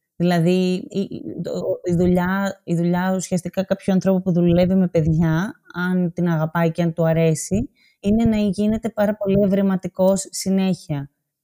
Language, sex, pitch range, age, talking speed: Greek, female, 170-200 Hz, 20-39, 145 wpm